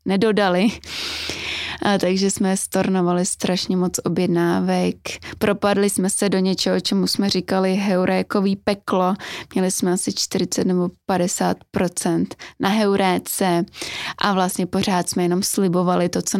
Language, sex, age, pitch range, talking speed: Czech, female, 20-39, 180-200 Hz, 120 wpm